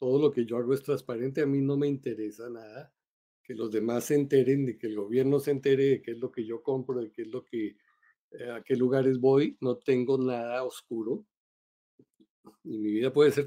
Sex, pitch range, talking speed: male, 120-145 Hz, 220 wpm